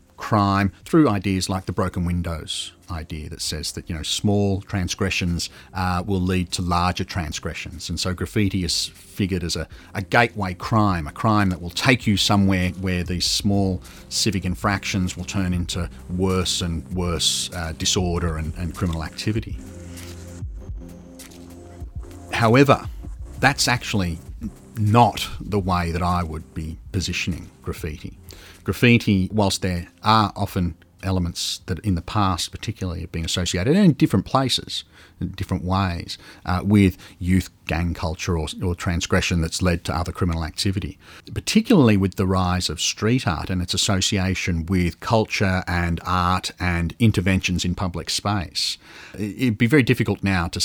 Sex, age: male, 40-59